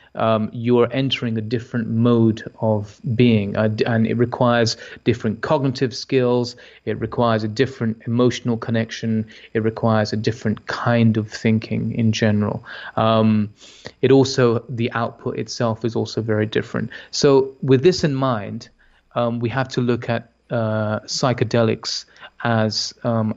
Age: 30-49